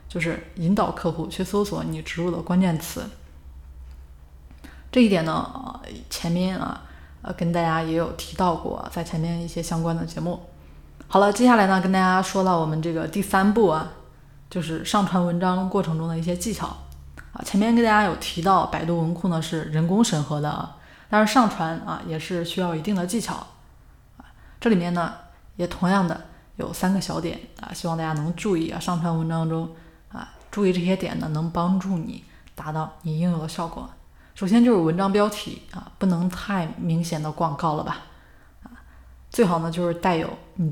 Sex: female